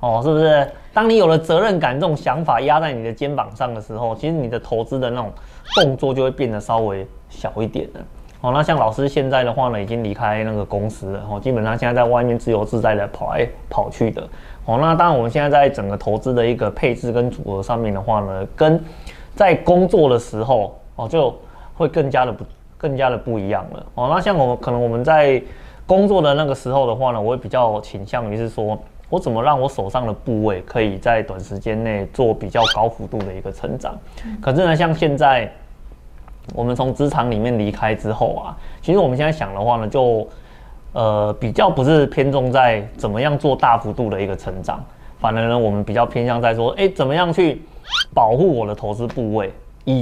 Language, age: Chinese, 20-39